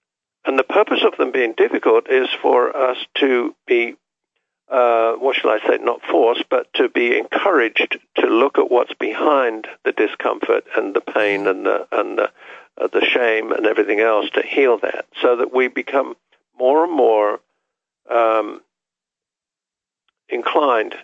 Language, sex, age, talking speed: English, male, 60-79, 155 wpm